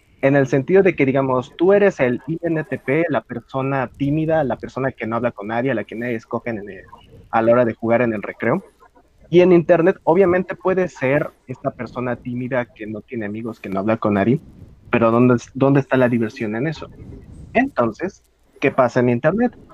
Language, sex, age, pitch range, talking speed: Spanish, male, 30-49, 115-135 Hz, 195 wpm